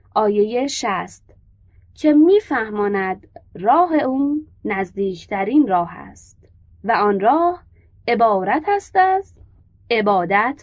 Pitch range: 195-280 Hz